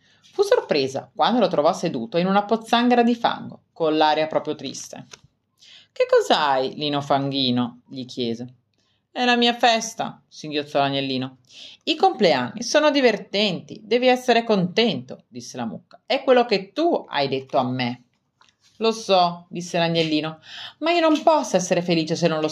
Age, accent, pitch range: 30-49, native, 140-225 Hz